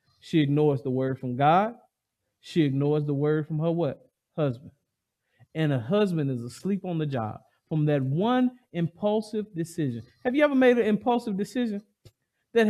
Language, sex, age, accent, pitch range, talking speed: English, male, 40-59, American, 180-245 Hz, 165 wpm